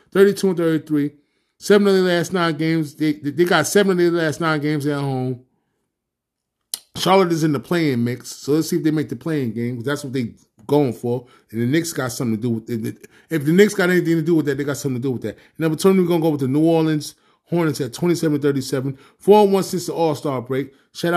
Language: English